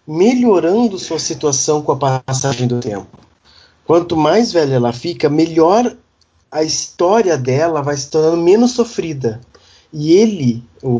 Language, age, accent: Portuguese, 20-39, Brazilian